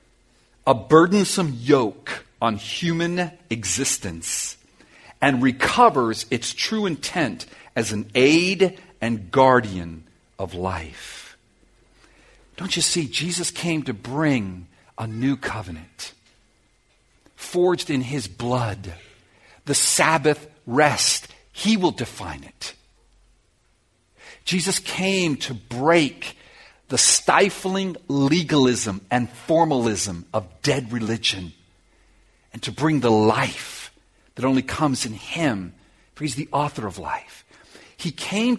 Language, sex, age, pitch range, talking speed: English, male, 50-69, 110-170 Hz, 105 wpm